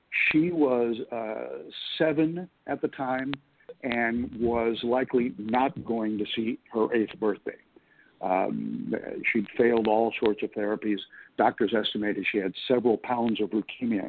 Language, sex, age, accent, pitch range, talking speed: English, male, 60-79, American, 110-140 Hz, 135 wpm